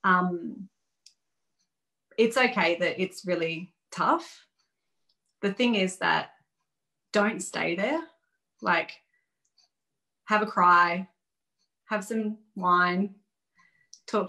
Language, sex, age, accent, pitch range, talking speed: English, female, 30-49, Australian, 185-245 Hz, 90 wpm